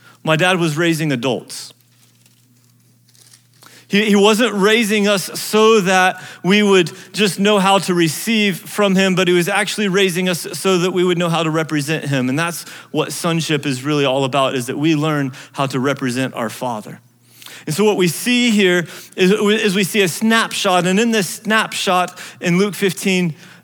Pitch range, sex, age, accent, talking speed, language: 155-200 Hz, male, 30-49, American, 185 wpm, English